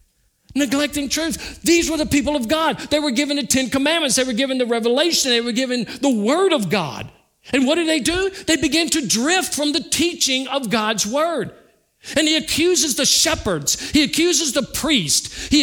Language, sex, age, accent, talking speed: English, male, 50-69, American, 195 wpm